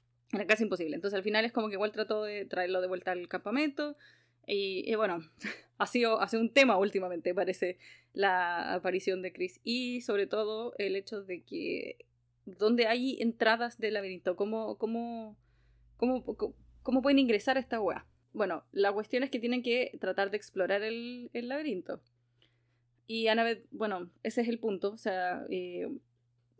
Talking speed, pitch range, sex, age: 170 wpm, 185-245 Hz, female, 20-39